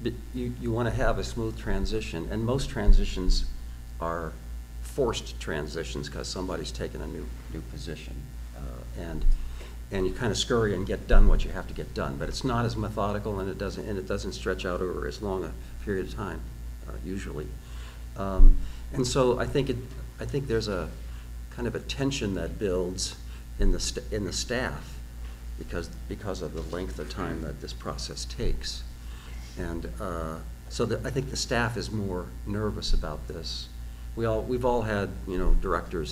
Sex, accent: male, American